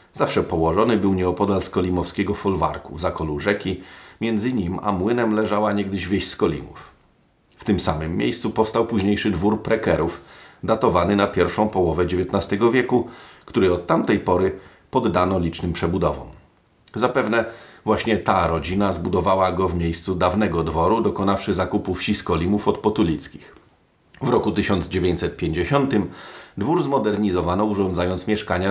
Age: 40-59